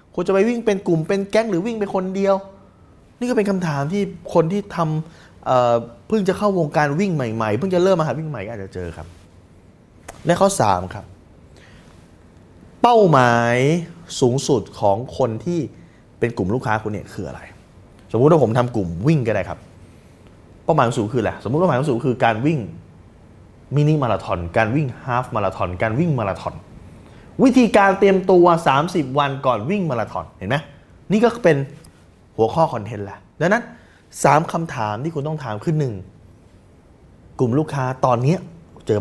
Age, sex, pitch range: 20-39, male, 100-165 Hz